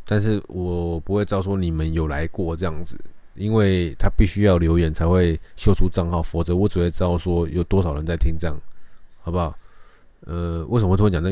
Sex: male